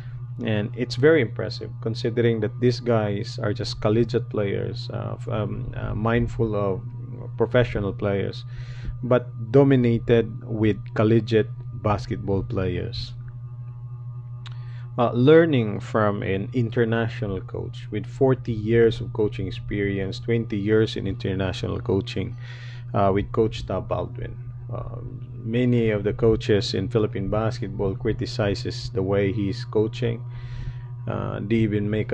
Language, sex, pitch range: English, male, 110-120 Hz